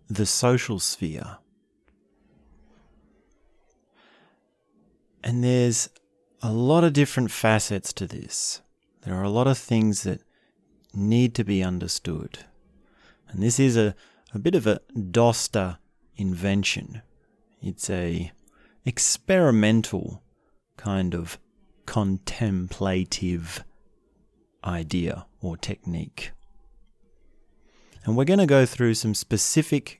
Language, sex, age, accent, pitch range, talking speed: English, male, 30-49, Australian, 90-115 Hz, 100 wpm